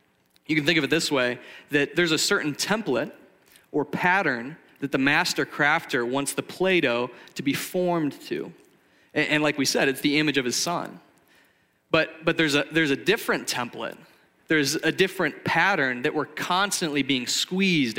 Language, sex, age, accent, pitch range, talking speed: English, male, 30-49, American, 140-175 Hz, 175 wpm